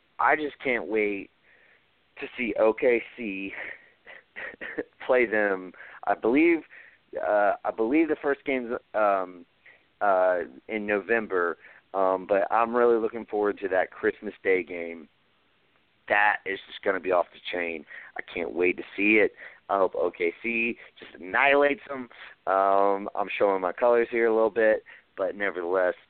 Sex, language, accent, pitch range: male, English, American, 100-140 Hz